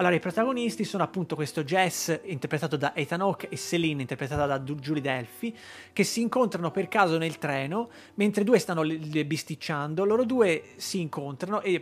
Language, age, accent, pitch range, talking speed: Italian, 30-49, native, 155-200 Hz, 175 wpm